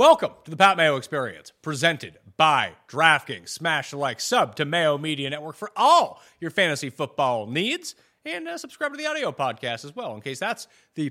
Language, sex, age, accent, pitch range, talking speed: English, male, 30-49, American, 130-195 Hz, 195 wpm